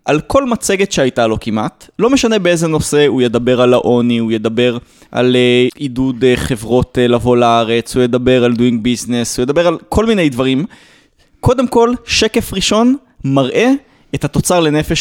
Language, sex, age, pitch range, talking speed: Hebrew, male, 20-39, 130-210 Hz, 160 wpm